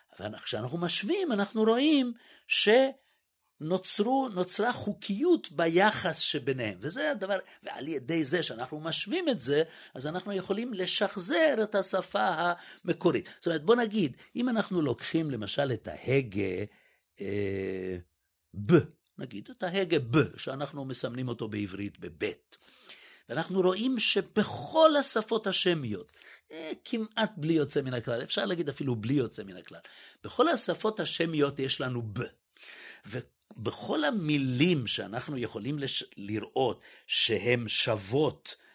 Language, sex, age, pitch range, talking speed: Hebrew, male, 50-69, 130-215 Hz, 120 wpm